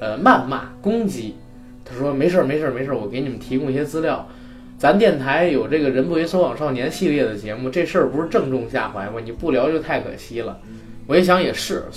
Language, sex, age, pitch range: Chinese, male, 20-39, 110-165 Hz